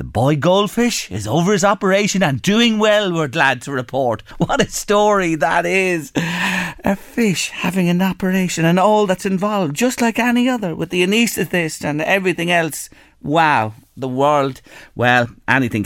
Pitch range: 130-185 Hz